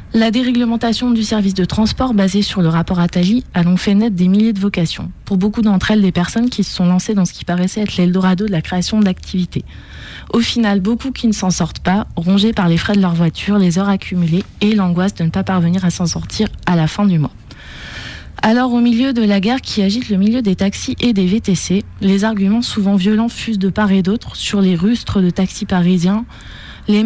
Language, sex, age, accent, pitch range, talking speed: French, female, 20-39, French, 185-220 Hz, 225 wpm